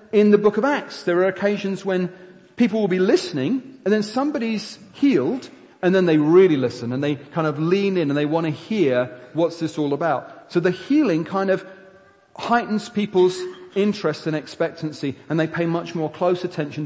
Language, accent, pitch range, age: English, British, 170-215 Hz, 40-59